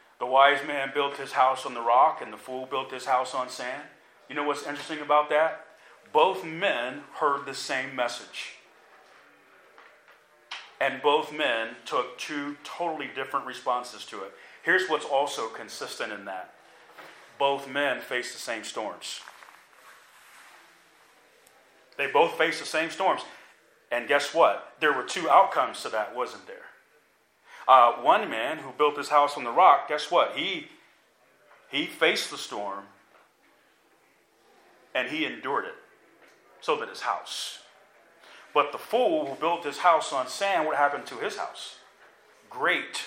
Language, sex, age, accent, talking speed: English, male, 40-59, American, 150 wpm